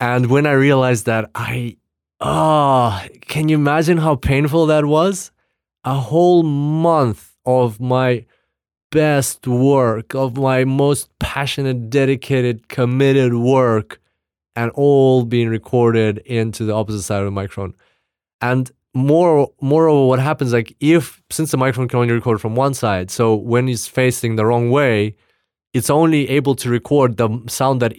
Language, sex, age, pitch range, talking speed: English, male, 20-39, 115-140 Hz, 155 wpm